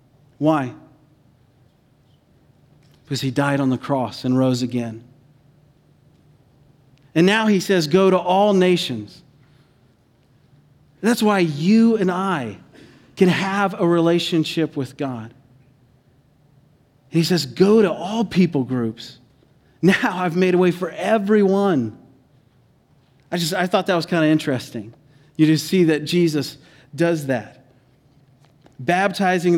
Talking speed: 120 wpm